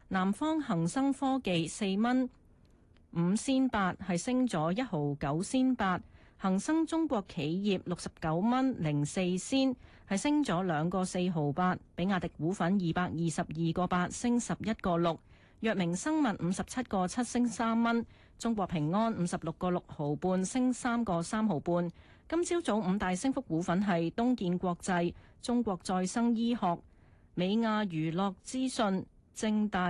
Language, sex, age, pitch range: Chinese, female, 40-59, 170-240 Hz